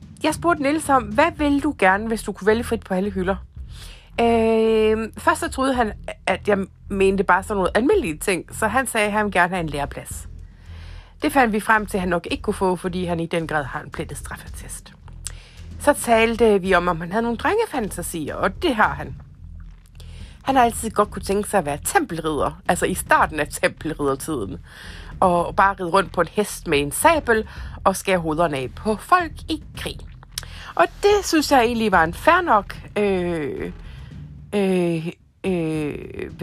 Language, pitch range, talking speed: Danish, 170-245 Hz, 190 wpm